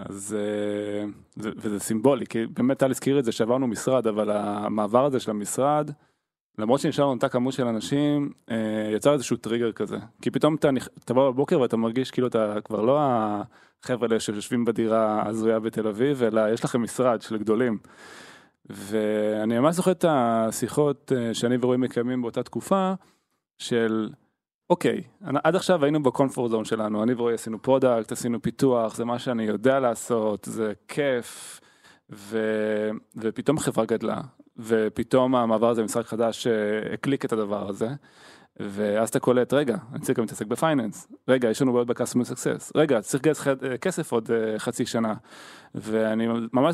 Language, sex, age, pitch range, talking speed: Hebrew, male, 20-39, 110-135 Hz, 155 wpm